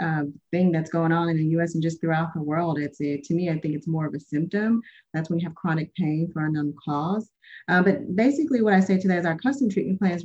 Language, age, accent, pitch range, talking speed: English, 30-49, American, 150-180 Hz, 270 wpm